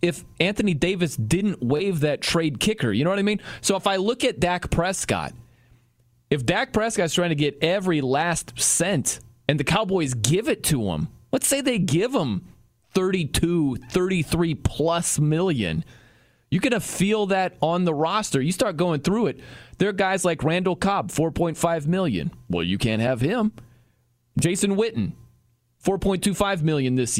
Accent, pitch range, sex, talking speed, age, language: American, 140-185 Hz, male, 170 wpm, 30-49, English